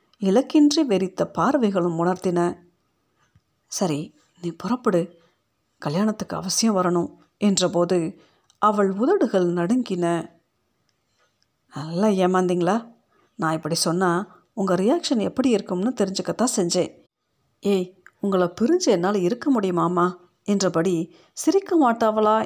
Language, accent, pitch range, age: Tamil, native, 175-230 Hz, 50-69